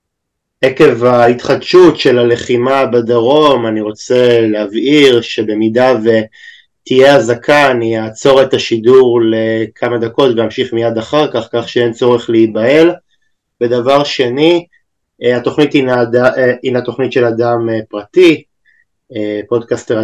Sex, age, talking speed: male, 20-39, 100 wpm